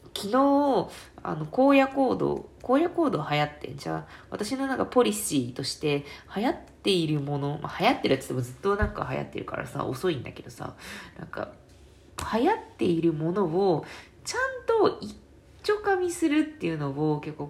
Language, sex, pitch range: Japanese, female, 145-215 Hz